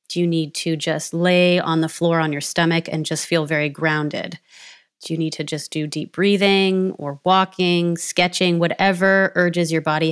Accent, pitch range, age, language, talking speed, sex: American, 160-190 Hz, 30-49, English, 190 wpm, female